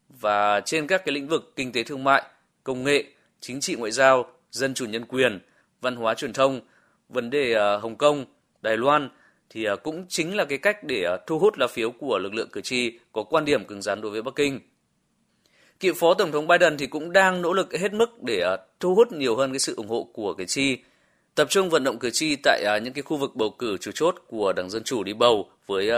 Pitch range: 115-165 Hz